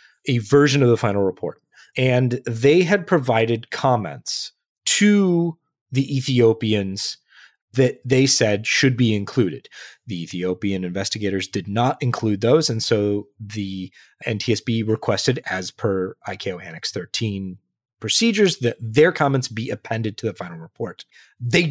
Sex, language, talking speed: male, English, 135 wpm